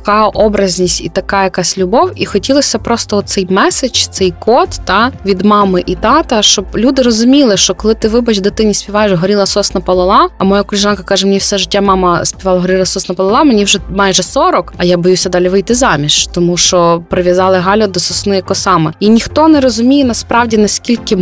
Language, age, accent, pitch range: Ukrainian, 20-39, native, 185-220 Hz